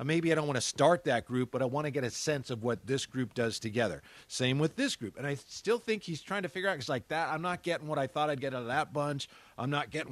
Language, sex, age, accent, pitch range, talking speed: English, male, 50-69, American, 125-160 Hz, 305 wpm